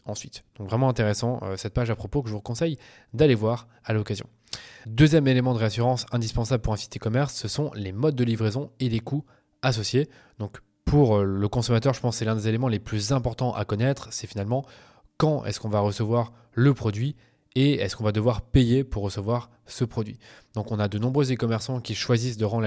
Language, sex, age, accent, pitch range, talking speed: French, male, 20-39, French, 110-130 Hz, 210 wpm